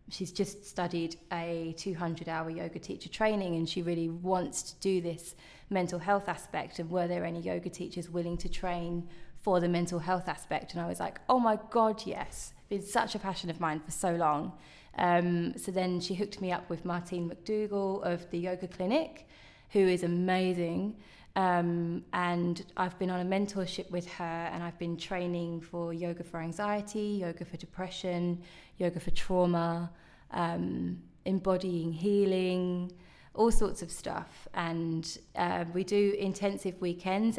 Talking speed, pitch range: 165 wpm, 170-190 Hz